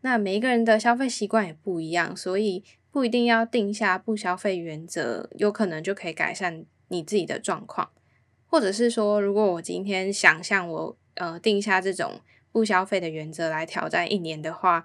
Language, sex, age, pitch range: Chinese, female, 10-29, 175-215 Hz